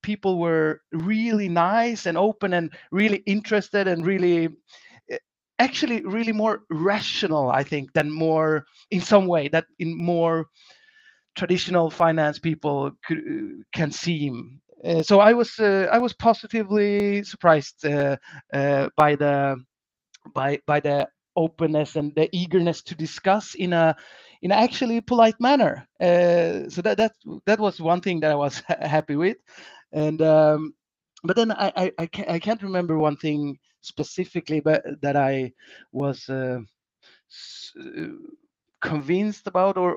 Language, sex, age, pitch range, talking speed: English, male, 30-49, 150-200 Hz, 145 wpm